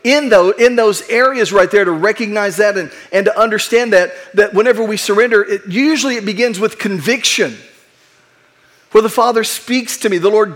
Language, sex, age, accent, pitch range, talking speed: English, male, 40-59, American, 195-225 Hz, 170 wpm